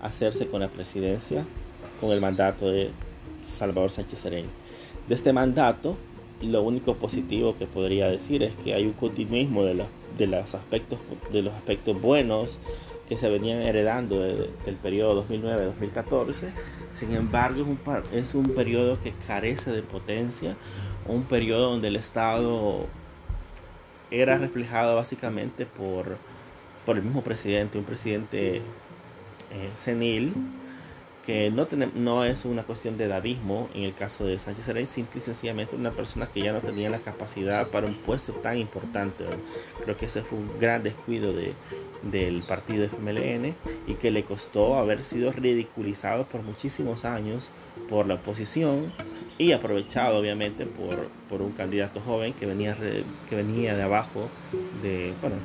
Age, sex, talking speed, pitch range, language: 30-49, male, 145 wpm, 100-120 Hz, Spanish